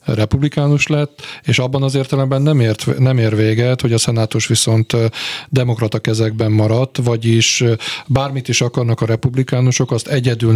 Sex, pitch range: male, 110-130 Hz